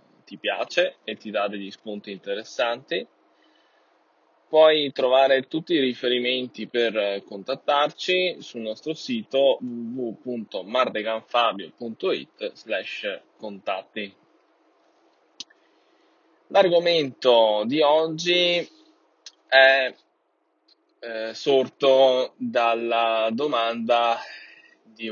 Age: 10-29